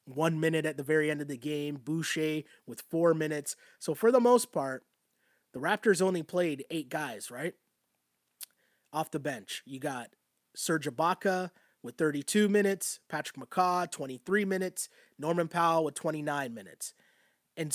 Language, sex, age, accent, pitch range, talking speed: English, male, 30-49, American, 150-180 Hz, 150 wpm